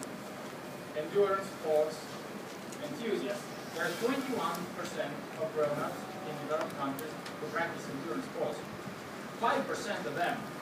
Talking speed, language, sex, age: 100 wpm, English, male, 30-49